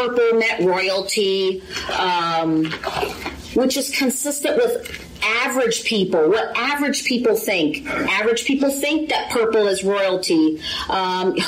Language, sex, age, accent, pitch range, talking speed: English, female, 40-59, American, 190-255 Hz, 115 wpm